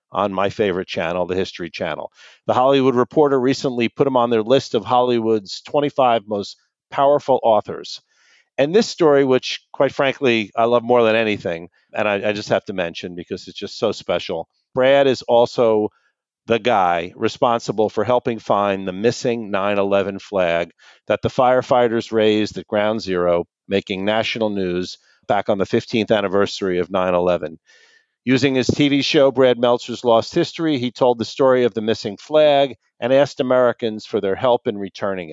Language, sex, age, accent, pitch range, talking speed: English, male, 50-69, American, 100-130 Hz, 170 wpm